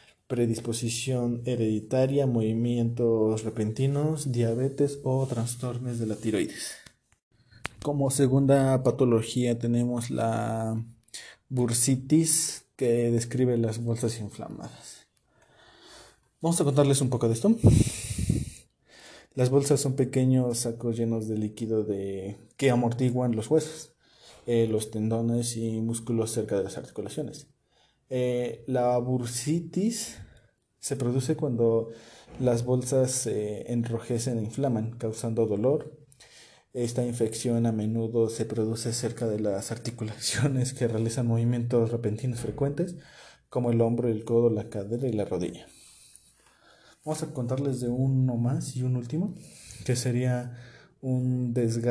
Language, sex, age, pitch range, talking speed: Spanish, male, 20-39, 115-130 Hz, 115 wpm